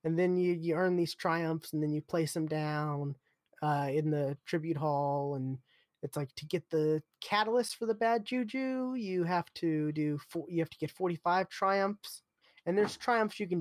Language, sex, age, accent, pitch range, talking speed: English, male, 20-39, American, 145-180 Hz, 195 wpm